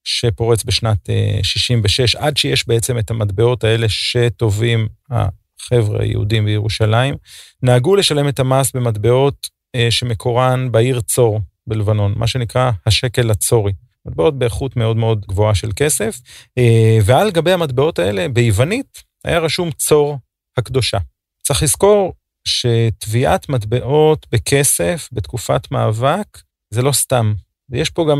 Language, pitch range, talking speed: Hebrew, 110-135 Hz, 115 wpm